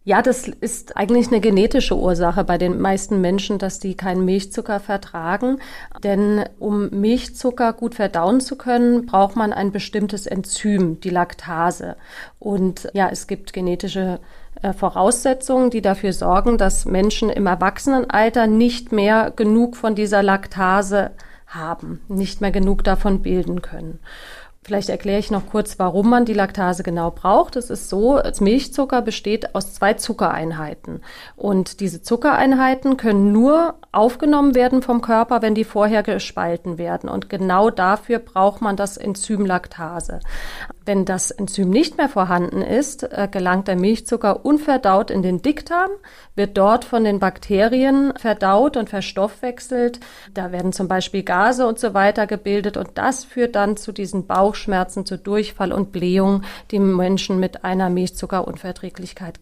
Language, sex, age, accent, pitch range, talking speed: German, female, 30-49, German, 190-235 Hz, 145 wpm